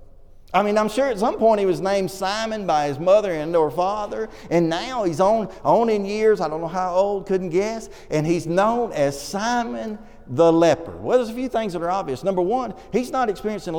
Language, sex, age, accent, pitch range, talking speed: English, male, 40-59, American, 130-205 Hz, 220 wpm